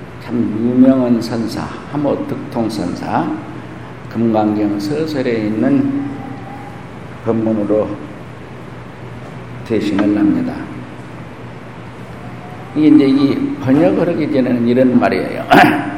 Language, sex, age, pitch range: Korean, male, 50-69, 105-135 Hz